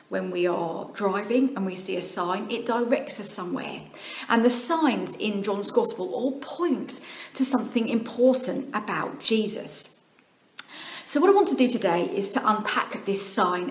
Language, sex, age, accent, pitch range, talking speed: English, female, 40-59, British, 200-260 Hz, 165 wpm